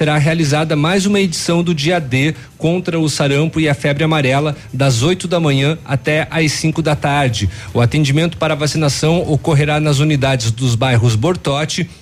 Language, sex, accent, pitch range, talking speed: Portuguese, male, Brazilian, 135-170 Hz, 175 wpm